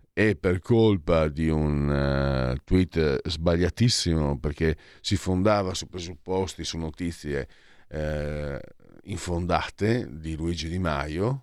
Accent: native